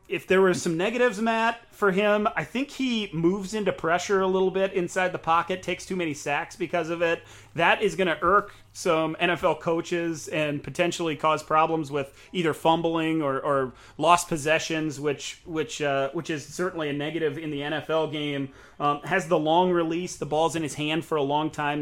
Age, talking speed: 30-49, 200 wpm